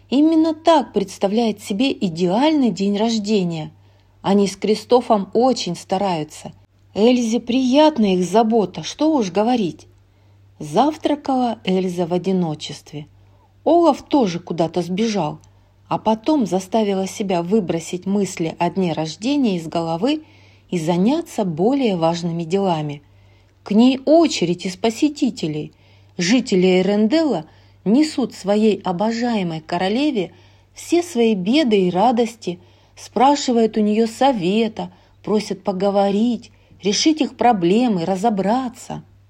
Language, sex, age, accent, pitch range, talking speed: Russian, female, 40-59, native, 170-240 Hz, 105 wpm